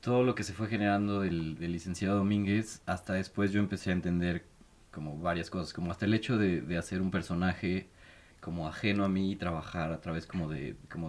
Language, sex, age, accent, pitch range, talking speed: Spanish, male, 30-49, Mexican, 85-105 Hz, 210 wpm